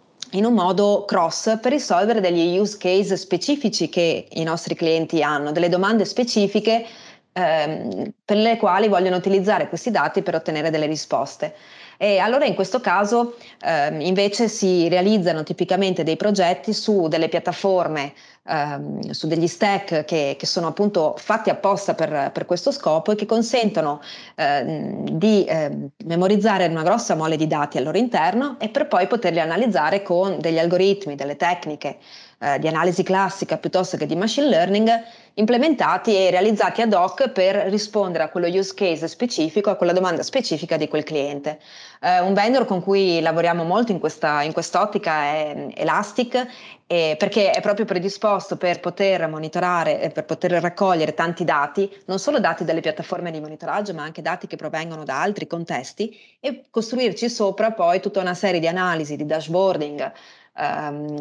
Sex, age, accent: female, 30-49, native